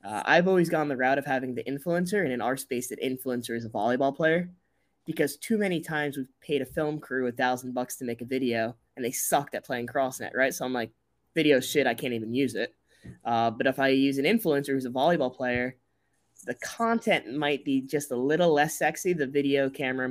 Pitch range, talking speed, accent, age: 125-145 Hz, 230 wpm, American, 20-39